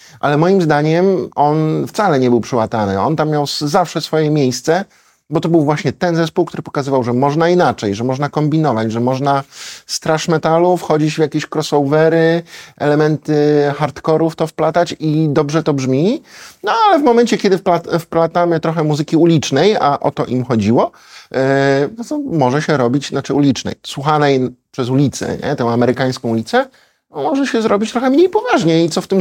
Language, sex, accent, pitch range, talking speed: Polish, male, native, 130-170 Hz, 175 wpm